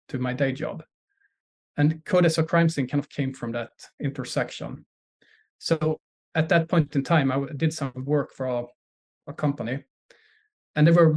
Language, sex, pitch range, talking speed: English, male, 125-150 Hz, 170 wpm